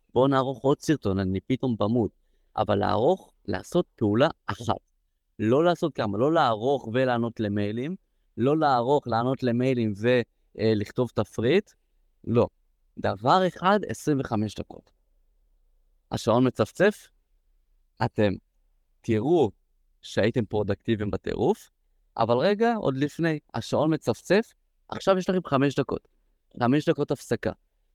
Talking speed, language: 110 wpm, Hebrew